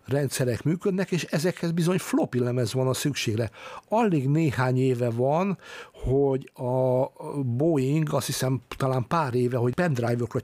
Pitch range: 125-150 Hz